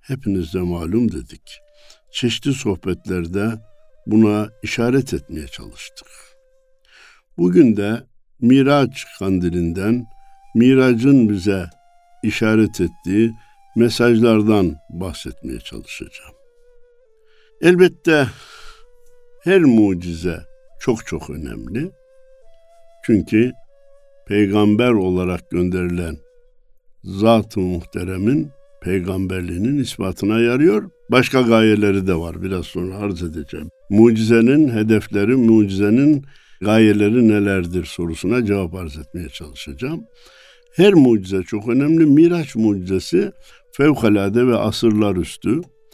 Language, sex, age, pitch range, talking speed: Turkish, male, 60-79, 100-150 Hz, 85 wpm